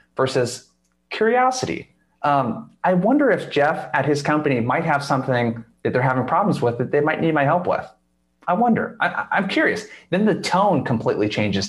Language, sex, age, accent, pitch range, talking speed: English, male, 30-49, American, 125-165 Hz, 180 wpm